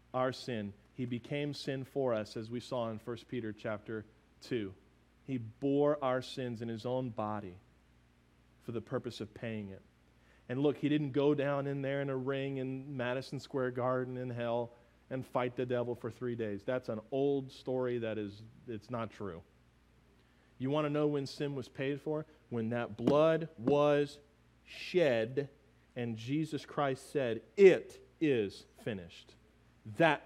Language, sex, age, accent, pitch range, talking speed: English, male, 40-59, American, 95-135 Hz, 165 wpm